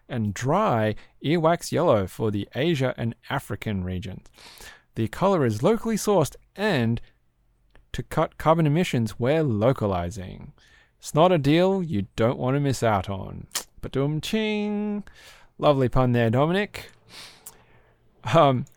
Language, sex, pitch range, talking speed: English, male, 110-145 Hz, 130 wpm